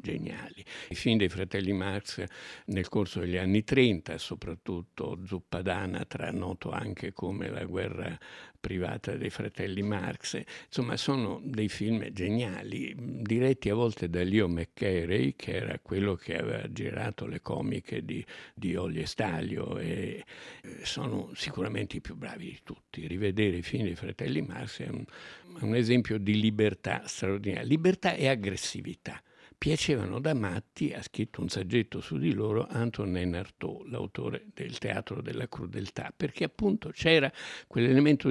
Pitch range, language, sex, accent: 100-120 Hz, Italian, male, native